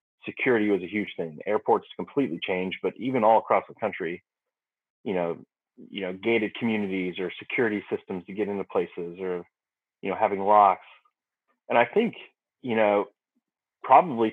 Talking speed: 160 wpm